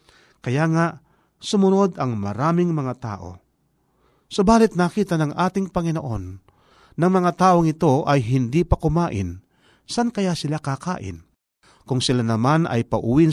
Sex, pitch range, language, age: male, 115-165 Hz, Filipino, 40-59